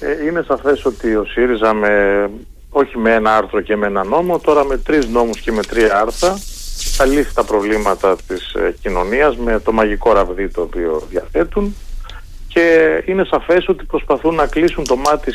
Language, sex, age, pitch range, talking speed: Greek, male, 40-59, 105-165 Hz, 170 wpm